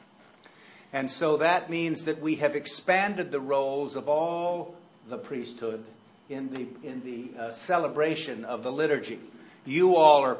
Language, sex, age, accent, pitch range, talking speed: English, male, 50-69, American, 130-165 Hz, 150 wpm